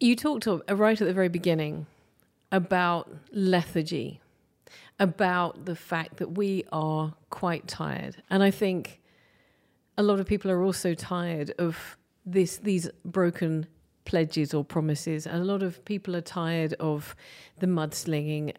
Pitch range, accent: 160-205 Hz, British